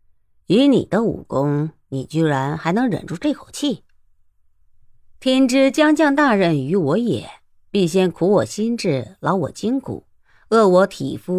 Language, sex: Chinese, female